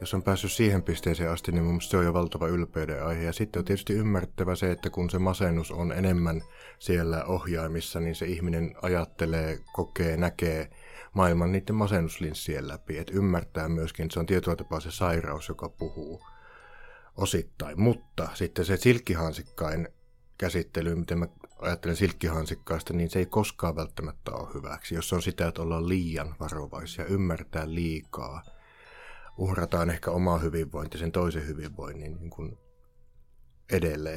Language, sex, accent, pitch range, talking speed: Finnish, male, native, 80-90 Hz, 150 wpm